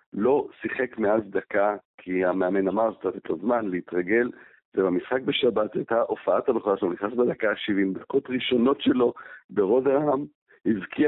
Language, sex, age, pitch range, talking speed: Hebrew, male, 50-69, 100-120 Hz, 145 wpm